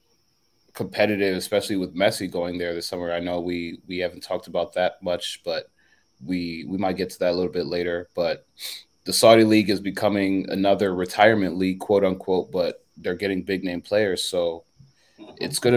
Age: 20-39